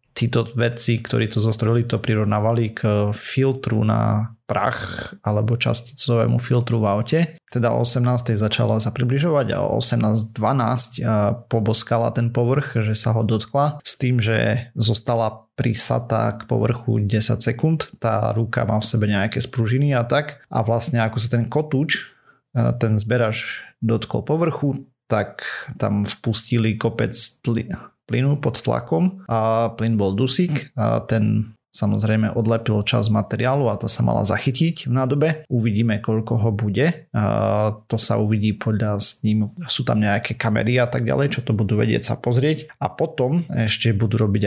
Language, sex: Slovak, male